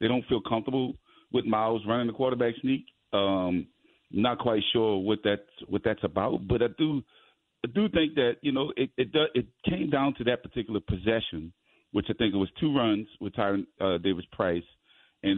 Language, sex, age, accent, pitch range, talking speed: English, male, 40-59, American, 95-120 Hz, 200 wpm